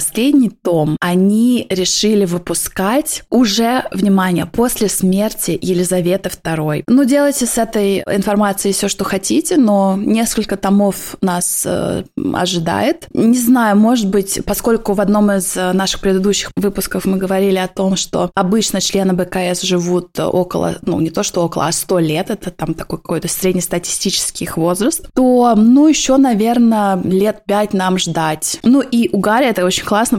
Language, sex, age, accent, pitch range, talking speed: Russian, female, 20-39, native, 180-230 Hz, 155 wpm